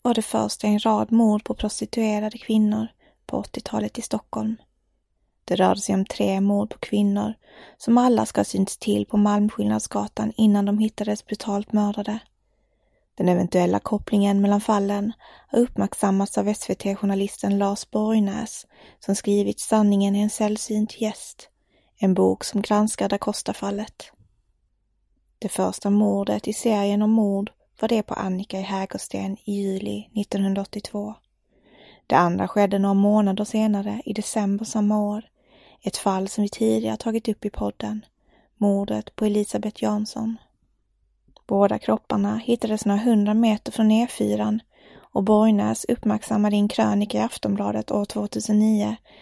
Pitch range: 200-215 Hz